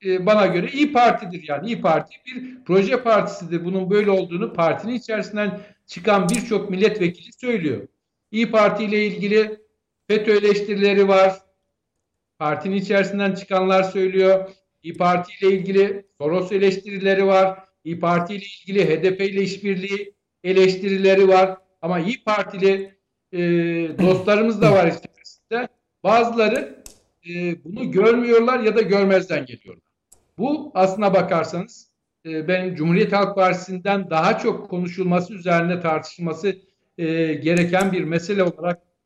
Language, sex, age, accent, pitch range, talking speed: Turkish, male, 60-79, native, 175-205 Hz, 125 wpm